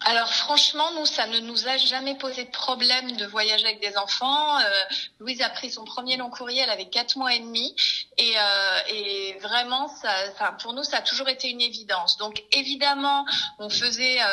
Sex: female